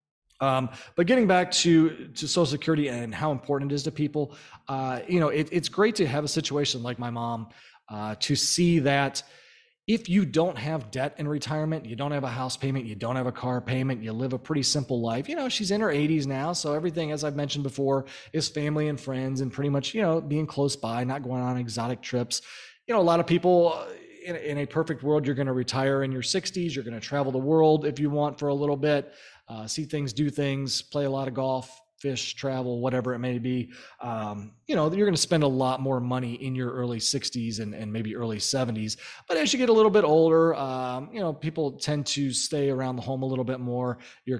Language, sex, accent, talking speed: English, male, American, 240 wpm